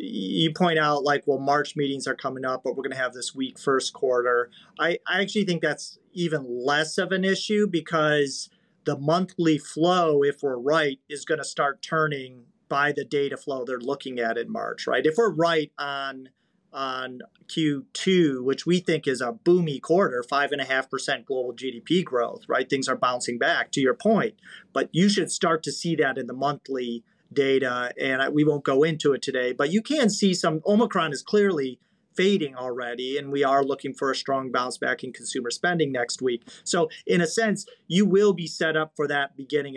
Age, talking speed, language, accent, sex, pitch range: 40-59, 195 wpm, English, American, male, 135-175 Hz